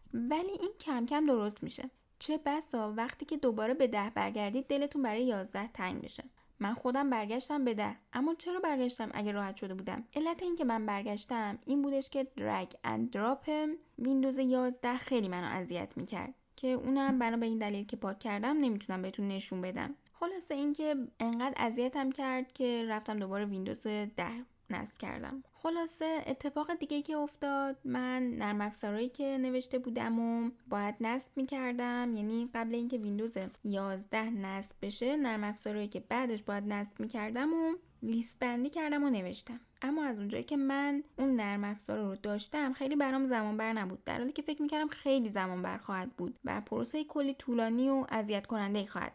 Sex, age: female, 10-29